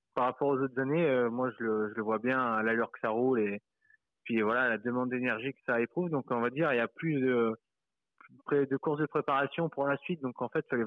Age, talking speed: 20-39, 270 wpm